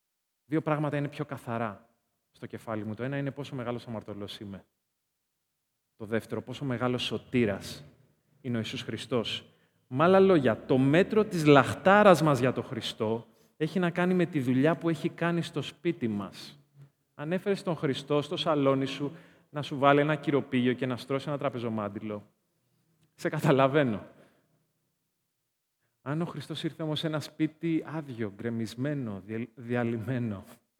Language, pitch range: Greek, 115-155 Hz